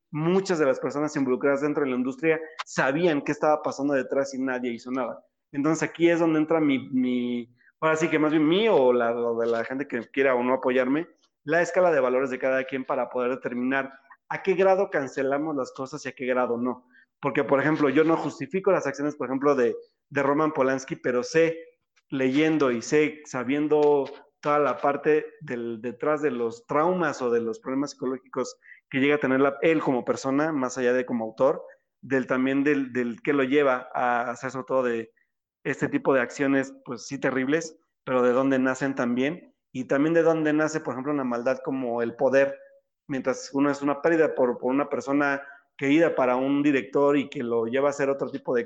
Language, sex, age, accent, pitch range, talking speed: Spanish, male, 30-49, Mexican, 130-155 Hz, 205 wpm